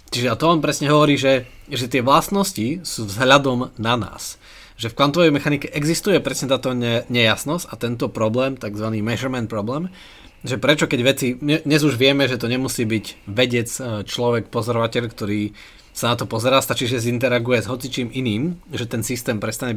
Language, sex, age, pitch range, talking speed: Slovak, male, 20-39, 115-140 Hz, 175 wpm